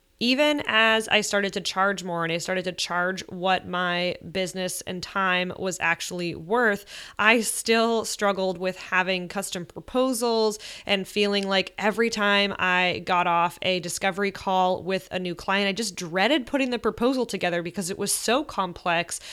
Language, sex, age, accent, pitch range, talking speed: English, female, 20-39, American, 180-210 Hz, 170 wpm